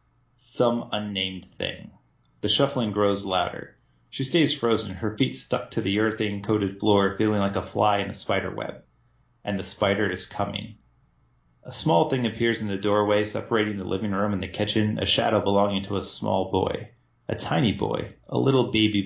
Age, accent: 30-49, American